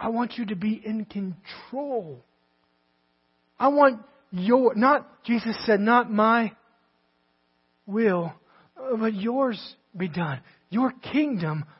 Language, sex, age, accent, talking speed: English, male, 40-59, American, 110 wpm